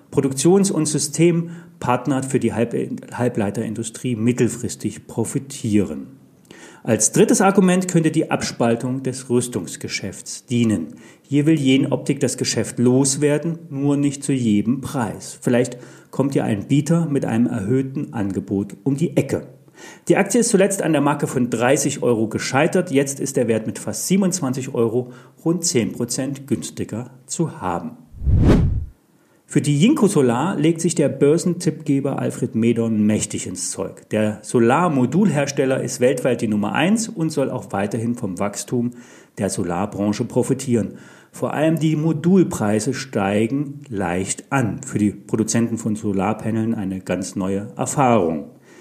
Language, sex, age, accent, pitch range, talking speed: German, male, 40-59, German, 115-155 Hz, 135 wpm